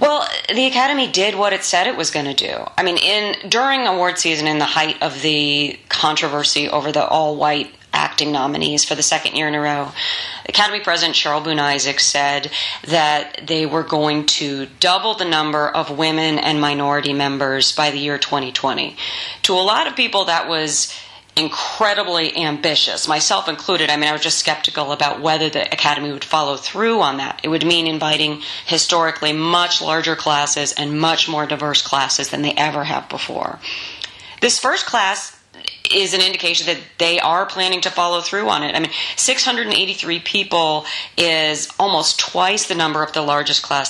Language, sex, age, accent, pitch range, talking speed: English, female, 30-49, American, 145-170 Hz, 180 wpm